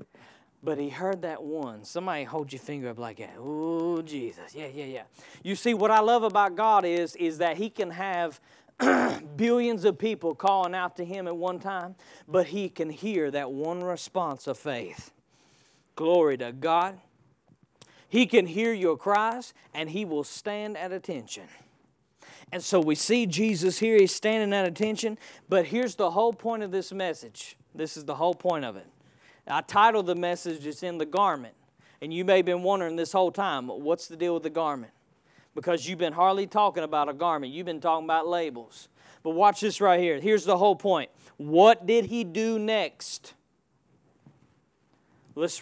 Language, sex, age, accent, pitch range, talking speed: English, male, 40-59, American, 165-230 Hz, 185 wpm